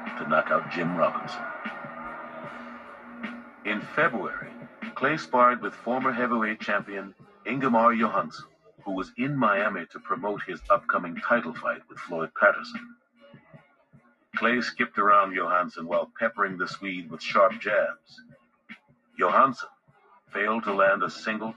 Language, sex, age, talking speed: English, male, 50-69, 125 wpm